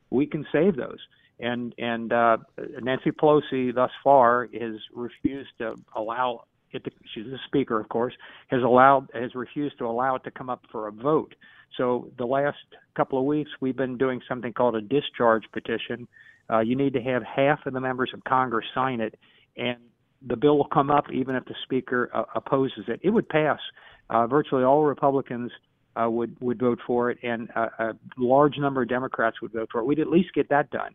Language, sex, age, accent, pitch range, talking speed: English, male, 50-69, American, 120-140 Hz, 205 wpm